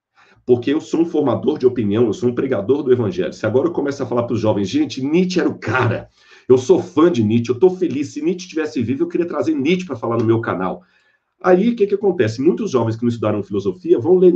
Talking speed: 255 wpm